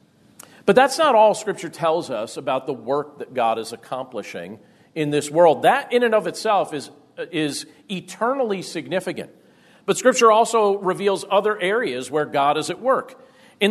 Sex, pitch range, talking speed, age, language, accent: male, 145-200 Hz, 165 wpm, 50-69, English, American